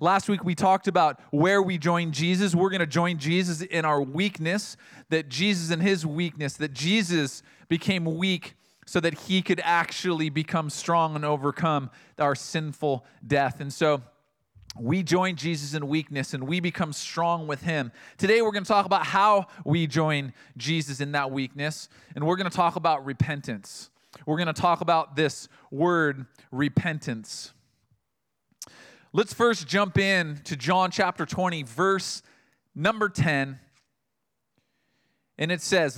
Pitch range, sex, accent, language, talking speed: 140-175 Hz, male, American, English, 155 wpm